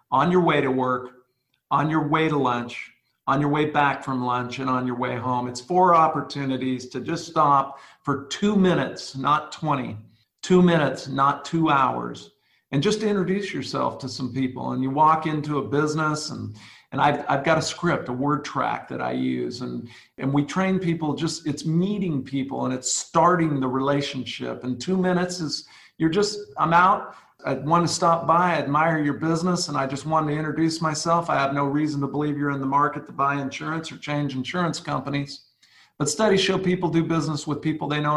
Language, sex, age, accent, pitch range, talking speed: English, male, 50-69, American, 130-165 Hz, 200 wpm